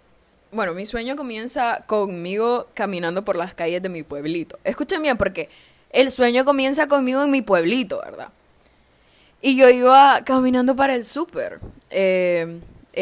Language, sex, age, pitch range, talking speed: Spanish, female, 10-29, 180-245 Hz, 145 wpm